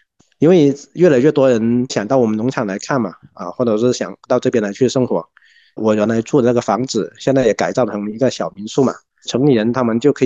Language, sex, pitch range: Chinese, male, 115-140 Hz